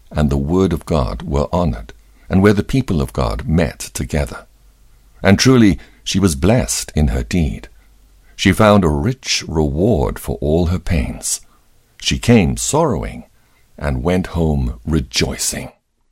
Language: English